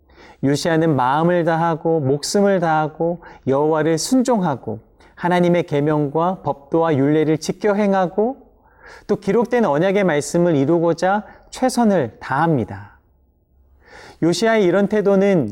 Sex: male